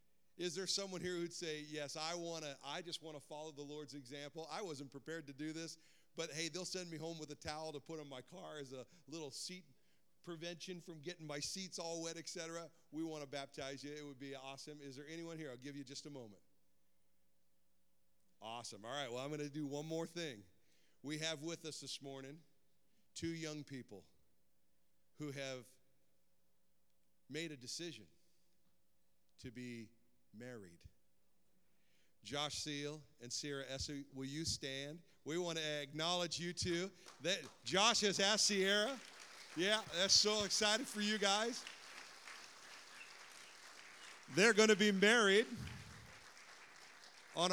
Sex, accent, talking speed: male, American, 165 wpm